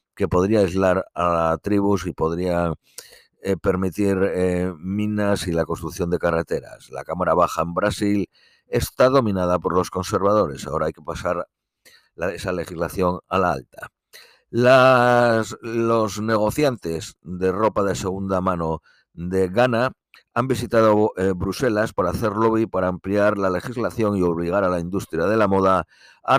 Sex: male